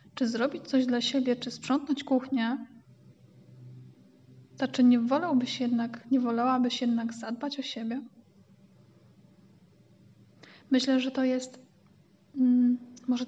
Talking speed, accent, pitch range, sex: 100 wpm, native, 235-260 Hz, female